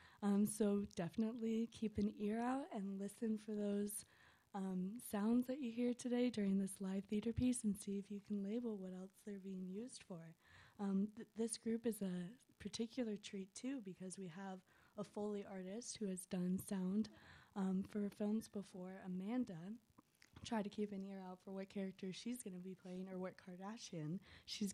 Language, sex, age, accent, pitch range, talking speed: English, female, 20-39, American, 185-215 Hz, 180 wpm